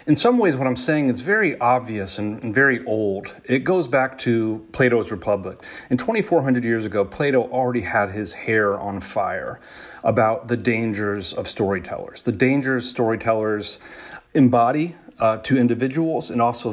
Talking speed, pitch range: 160 wpm, 100-125 Hz